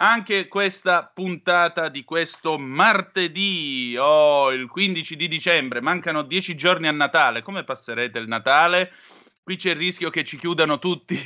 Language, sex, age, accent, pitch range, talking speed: Italian, male, 30-49, native, 135-180 Hz, 155 wpm